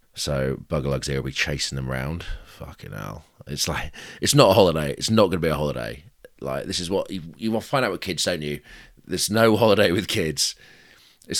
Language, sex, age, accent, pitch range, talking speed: English, male, 30-49, British, 75-95 Hz, 230 wpm